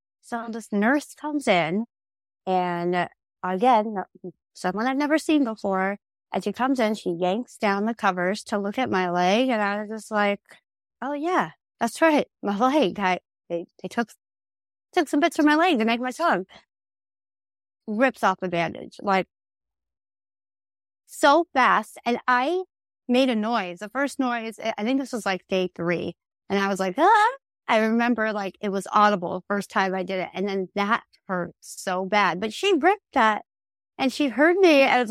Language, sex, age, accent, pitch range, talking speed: English, female, 30-49, American, 190-280 Hz, 180 wpm